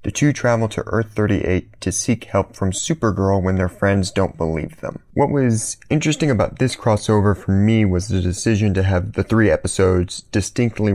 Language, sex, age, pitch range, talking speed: English, male, 30-49, 95-115 Hz, 180 wpm